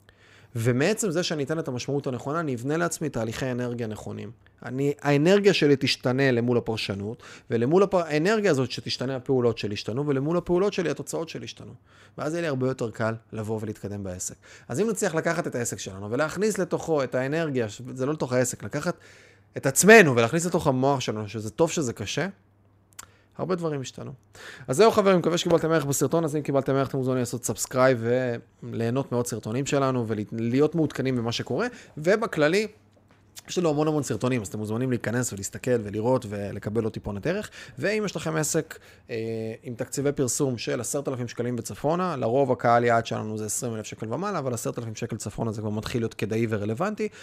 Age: 30-49